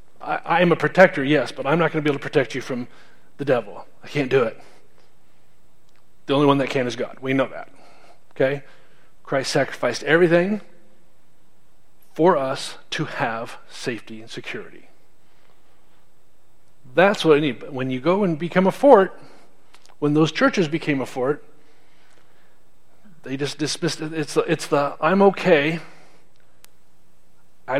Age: 40-59